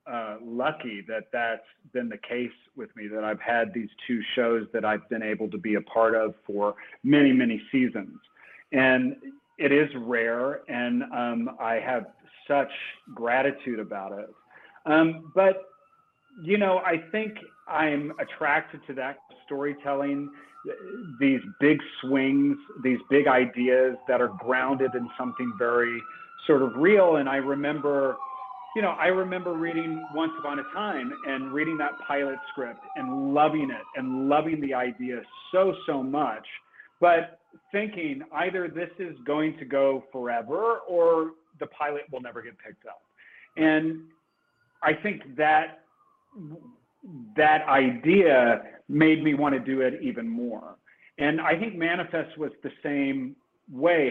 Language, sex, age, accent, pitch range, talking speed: English, male, 40-59, American, 125-175 Hz, 145 wpm